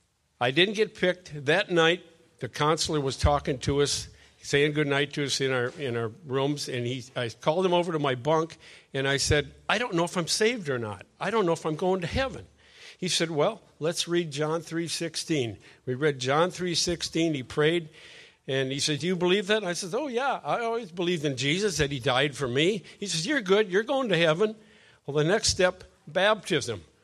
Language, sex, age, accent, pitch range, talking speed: English, male, 50-69, American, 135-175 Hz, 215 wpm